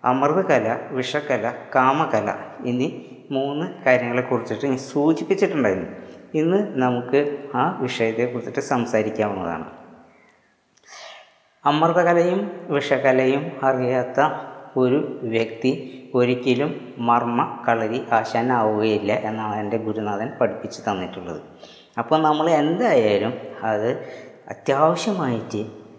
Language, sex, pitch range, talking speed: Malayalam, female, 115-140 Hz, 75 wpm